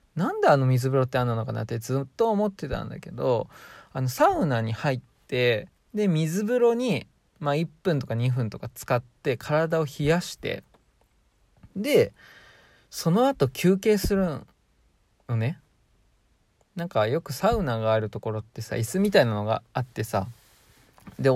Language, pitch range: Japanese, 115-175 Hz